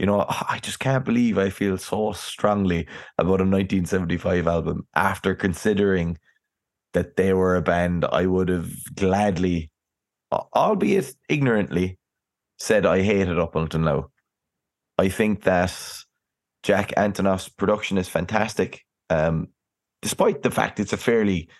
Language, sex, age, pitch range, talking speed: English, male, 20-39, 85-105 Hz, 135 wpm